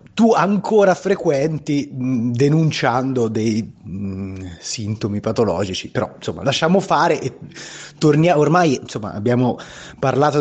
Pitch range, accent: 105-145 Hz, native